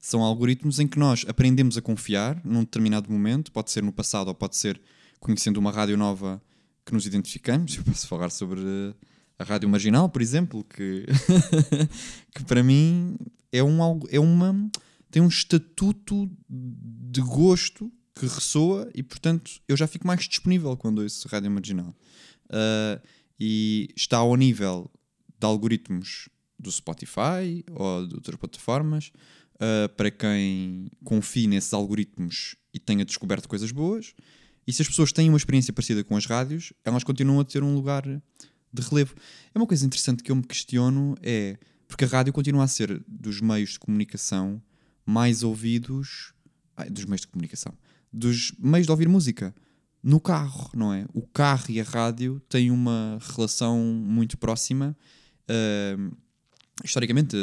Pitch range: 105-145 Hz